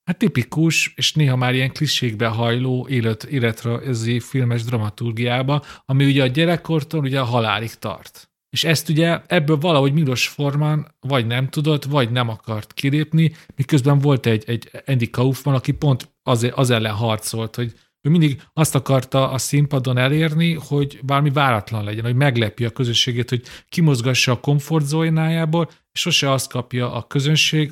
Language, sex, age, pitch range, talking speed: Hungarian, male, 40-59, 120-145 Hz, 150 wpm